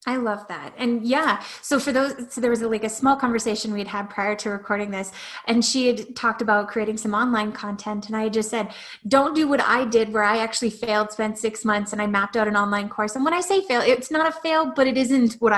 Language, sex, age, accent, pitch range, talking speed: English, female, 20-39, American, 215-250 Hz, 255 wpm